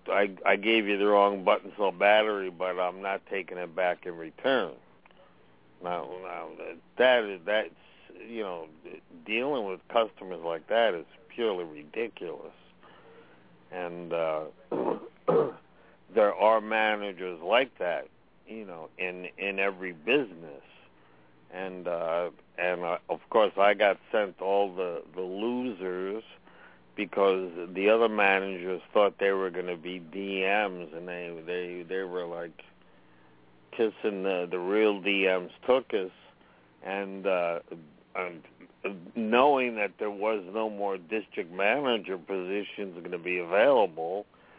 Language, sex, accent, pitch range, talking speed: English, male, American, 90-105 Hz, 135 wpm